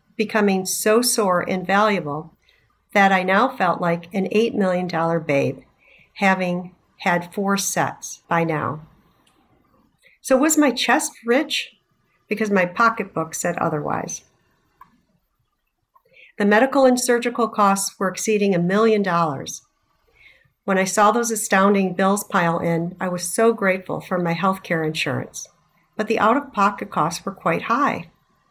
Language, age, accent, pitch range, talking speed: English, 50-69, American, 170-220 Hz, 140 wpm